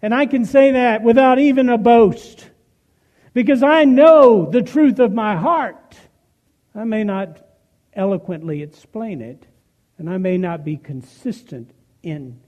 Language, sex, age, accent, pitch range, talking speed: English, male, 60-79, American, 130-200 Hz, 145 wpm